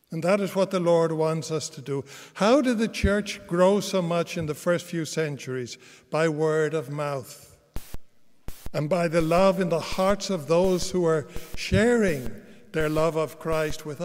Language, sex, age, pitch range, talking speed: English, male, 60-79, 150-190 Hz, 185 wpm